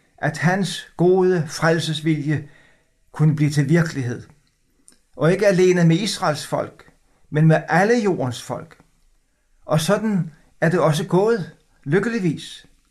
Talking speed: 120 wpm